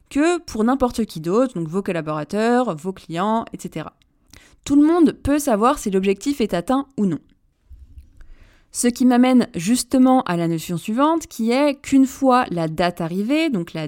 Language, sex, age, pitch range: French, female, 20-39, 175-270 Hz